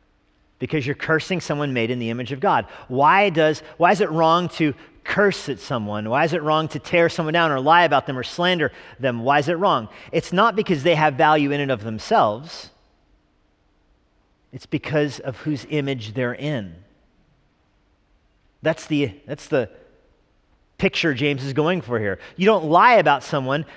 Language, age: English, 40-59